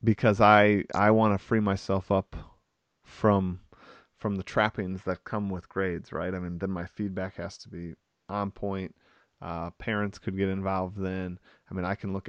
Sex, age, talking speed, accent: male, 30-49, 185 wpm, American